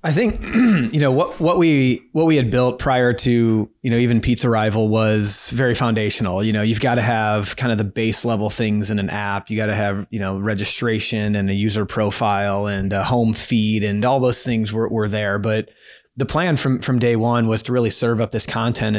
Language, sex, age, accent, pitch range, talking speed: English, male, 30-49, American, 110-125 Hz, 230 wpm